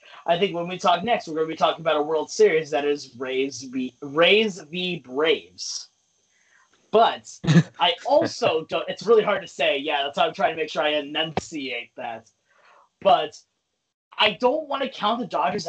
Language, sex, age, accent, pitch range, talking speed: English, male, 30-49, American, 155-215 Hz, 185 wpm